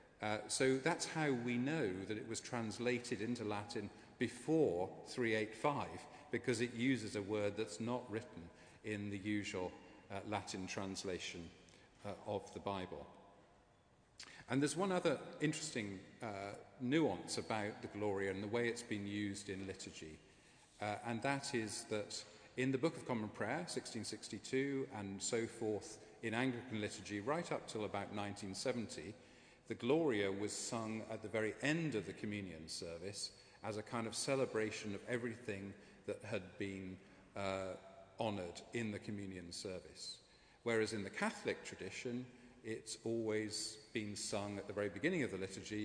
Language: English